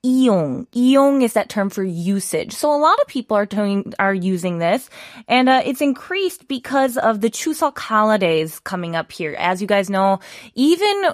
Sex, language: female, Korean